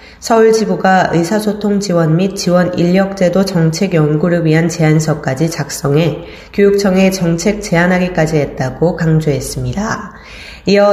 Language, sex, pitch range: Korean, female, 160-200 Hz